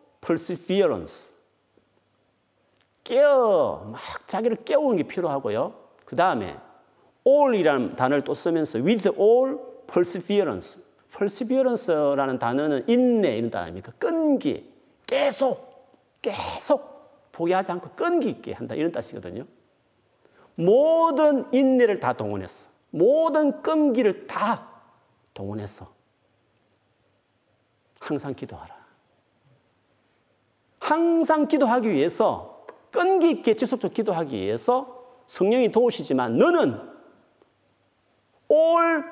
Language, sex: Korean, male